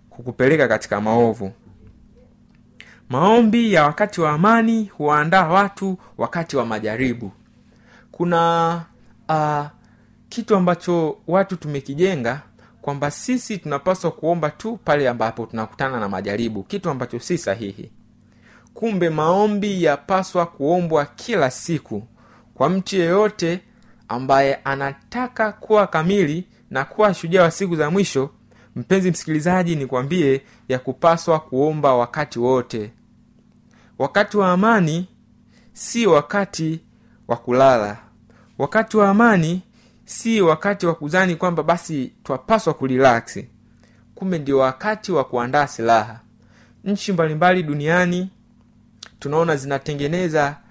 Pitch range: 120-185 Hz